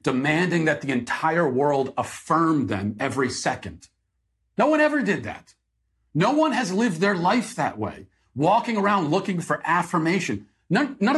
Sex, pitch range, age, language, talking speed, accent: male, 100-165 Hz, 40-59, English, 160 wpm, American